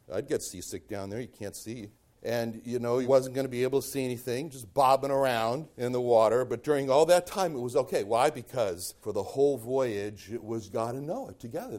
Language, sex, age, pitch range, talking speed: English, male, 60-79, 120-160 Hz, 235 wpm